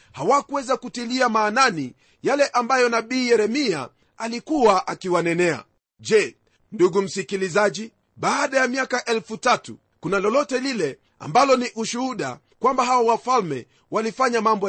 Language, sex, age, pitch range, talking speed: Swahili, male, 40-59, 200-255 Hz, 115 wpm